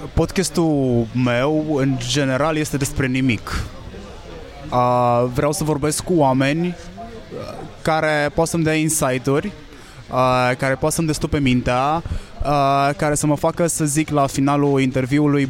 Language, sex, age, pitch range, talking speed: Romanian, male, 20-39, 125-155 Hz, 120 wpm